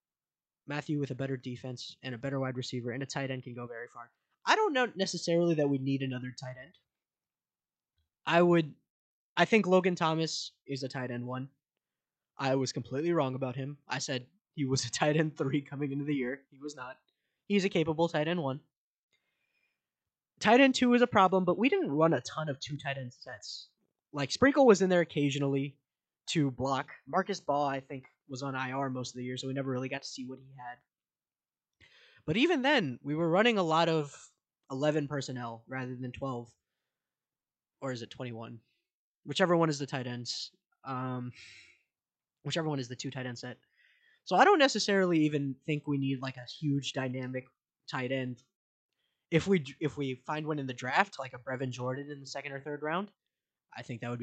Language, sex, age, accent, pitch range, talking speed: English, male, 20-39, American, 130-160 Hz, 200 wpm